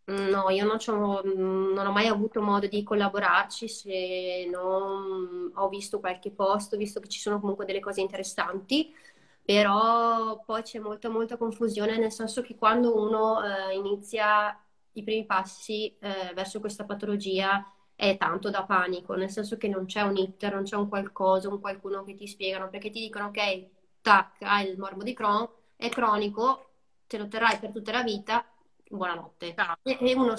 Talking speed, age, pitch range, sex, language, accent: 170 wpm, 20-39, 195-225 Hz, female, Italian, native